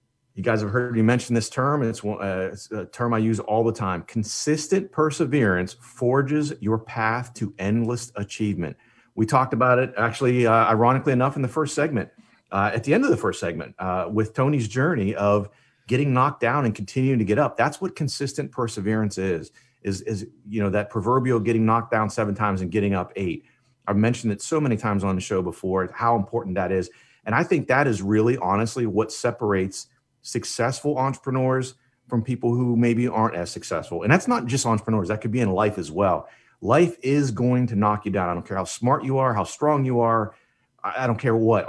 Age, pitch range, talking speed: 40-59, 105-130 Hz, 205 wpm